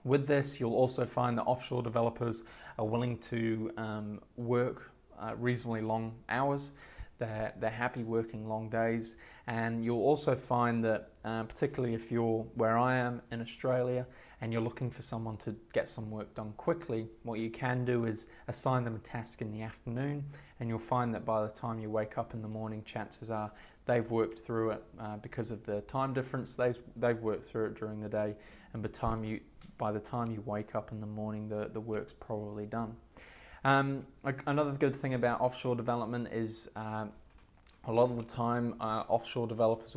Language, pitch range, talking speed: English, 110-120 Hz, 190 wpm